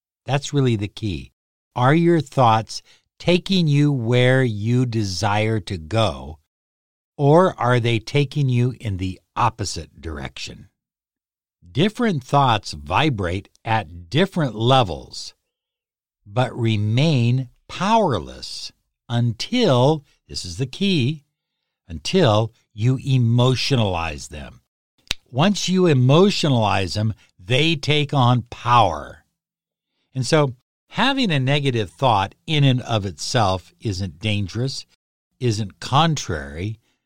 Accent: American